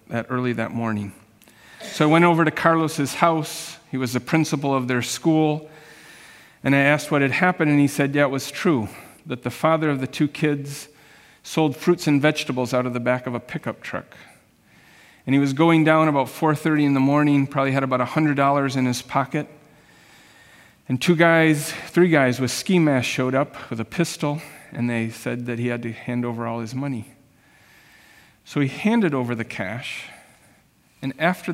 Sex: male